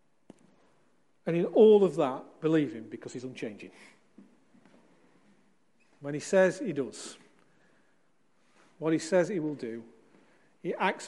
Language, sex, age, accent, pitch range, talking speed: English, male, 40-59, British, 145-175 Hz, 125 wpm